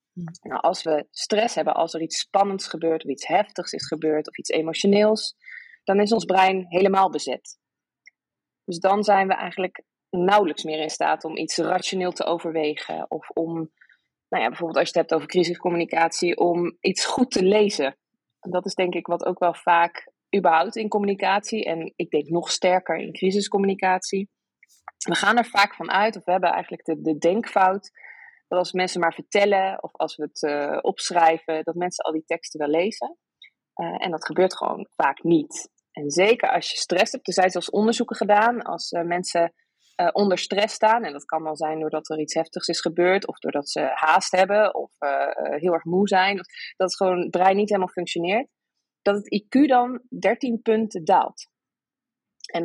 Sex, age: female, 20-39